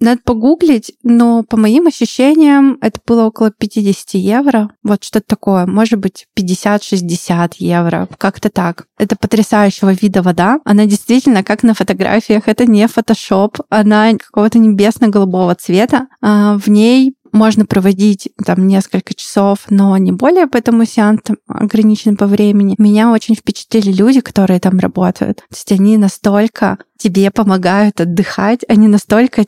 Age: 20-39